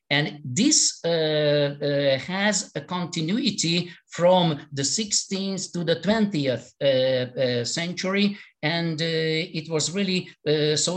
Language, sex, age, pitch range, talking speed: English, male, 50-69, 125-165 Hz, 125 wpm